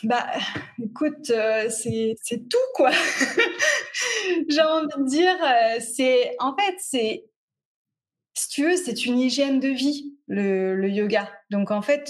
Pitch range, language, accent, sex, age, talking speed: 210-295 Hz, French, French, female, 20-39, 150 wpm